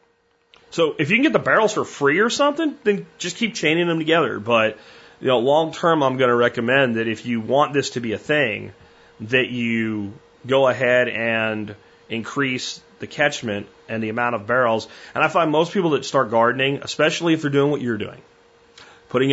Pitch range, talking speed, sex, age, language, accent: 110-145 Hz, 195 wpm, male, 30-49, English, American